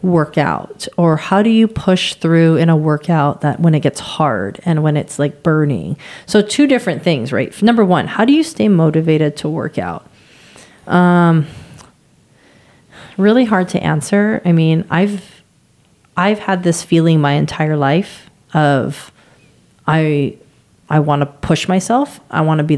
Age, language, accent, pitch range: 30-49, English, American, 150-180 Hz